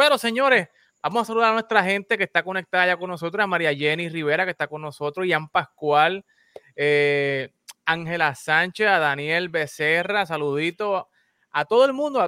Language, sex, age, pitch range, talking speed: Spanish, male, 20-39, 150-190 Hz, 175 wpm